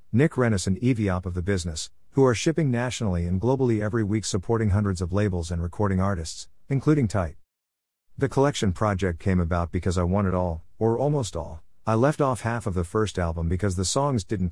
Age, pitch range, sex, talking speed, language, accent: 50-69, 90-115 Hz, male, 205 wpm, English, American